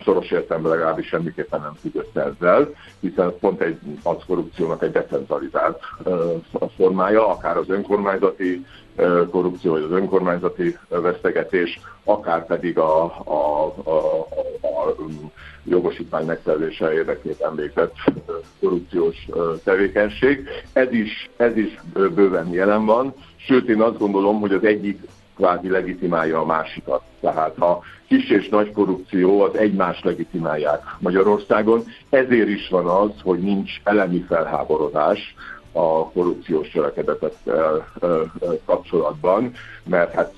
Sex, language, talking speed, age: male, Hungarian, 125 wpm, 60-79